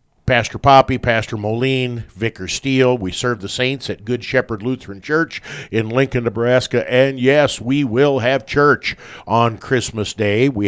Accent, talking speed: American, 155 wpm